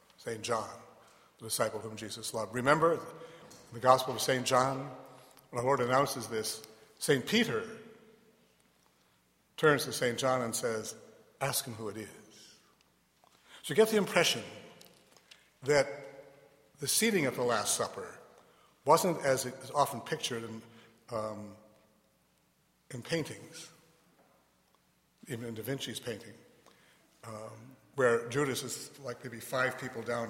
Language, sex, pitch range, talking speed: English, male, 115-160 Hz, 135 wpm